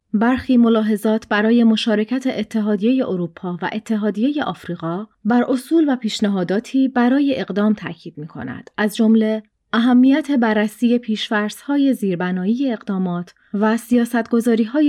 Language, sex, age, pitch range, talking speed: Persian, female, 30-49, 190-245 Hz, 105 wpm